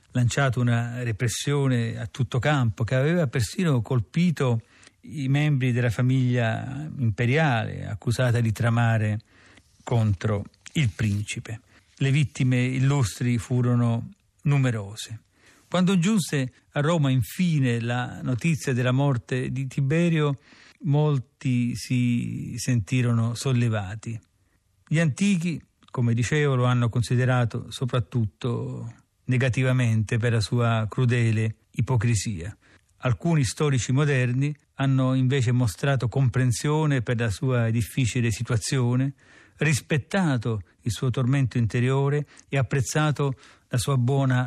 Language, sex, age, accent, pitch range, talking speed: Italian, male, 50-69, native, 115-140 Hz, 105 wpm